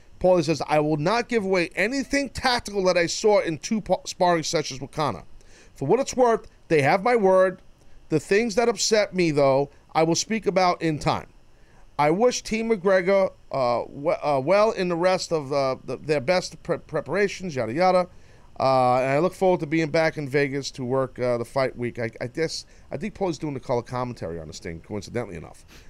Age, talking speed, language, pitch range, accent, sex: 40-59, 210 wpm, English, 145-205 Hz, American, male